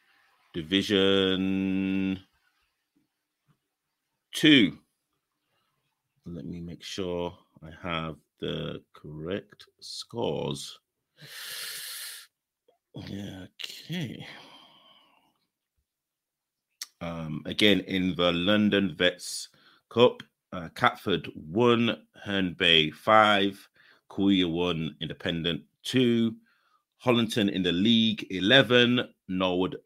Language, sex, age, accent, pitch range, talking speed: English, male, 30-49, British, 85-110 Hz, 70 wpm